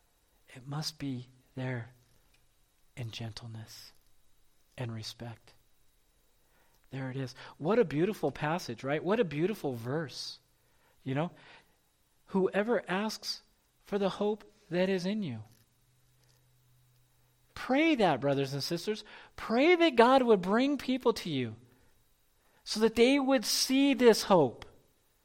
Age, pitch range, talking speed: 40-59, 125-210 Hz, 120 wpm